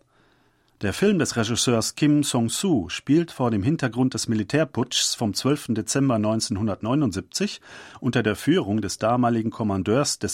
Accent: German